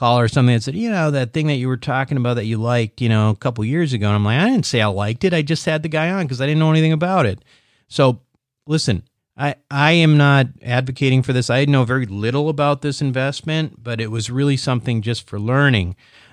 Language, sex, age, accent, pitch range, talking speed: English, male, 40-59, American, 115-145 Hz, 250 wpm